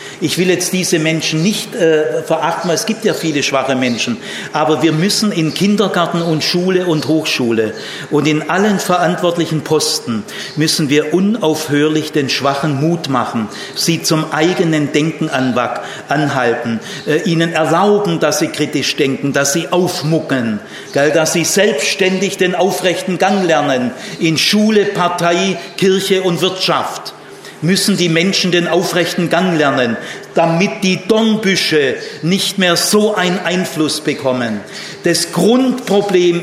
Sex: male